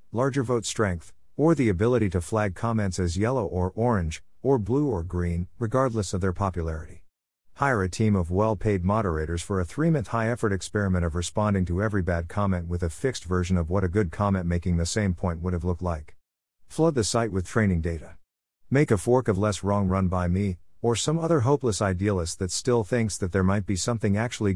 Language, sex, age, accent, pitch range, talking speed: English, male, 50-69, American, 90-115 Hz, 210 wpm